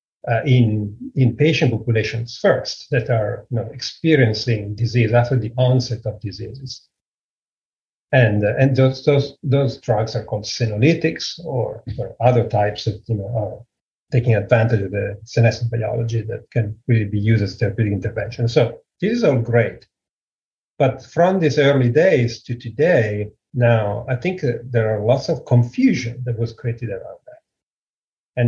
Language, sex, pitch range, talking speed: English, male, 110-130 Hz, 160 wpm